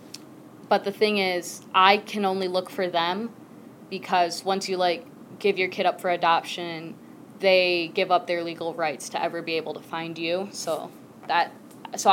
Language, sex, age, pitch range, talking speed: English, female, 20-39, 170-205 Hz, 180 wpm